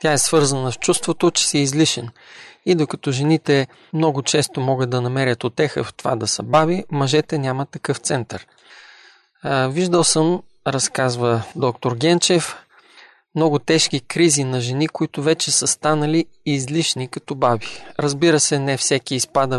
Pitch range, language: 135-160 Hz, Bulgarian